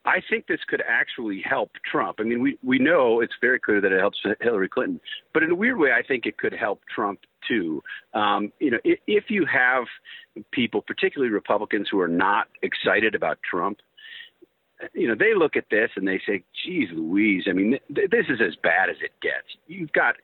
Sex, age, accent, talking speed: male, 50-69, American, 210 wpm